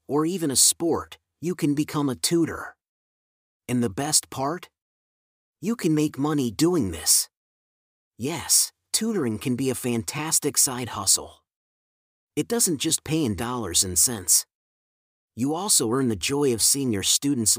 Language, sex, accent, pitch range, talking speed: English, male, American, 115-150 Hz, 150 wpm